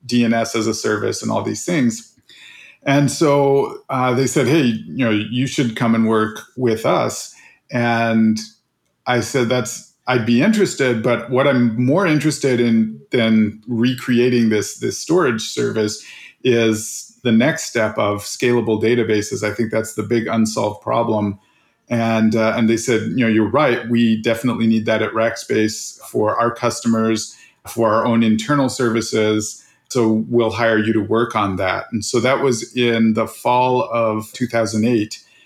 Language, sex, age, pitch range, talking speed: English, male, 40-59, 110-125 Hz, 160 wpm